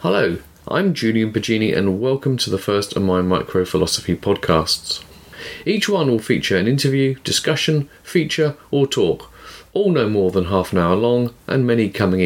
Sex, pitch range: male, 90-130 Hz